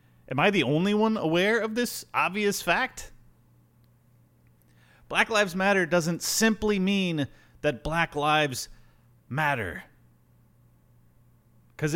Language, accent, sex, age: English, American, male, 30-49